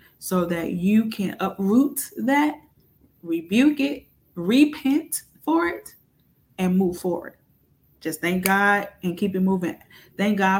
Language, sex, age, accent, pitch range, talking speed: English, female, 20-39, American, 180-210 Hz, 130 wpm